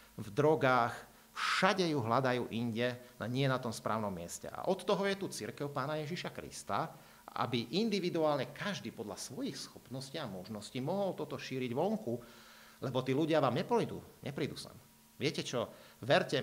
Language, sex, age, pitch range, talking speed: Slovak, male, 50-69, 110-150 Hz, 155 wpm